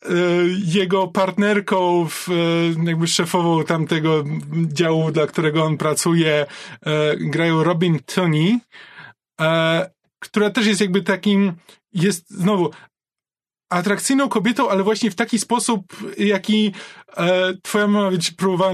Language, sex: Polish, male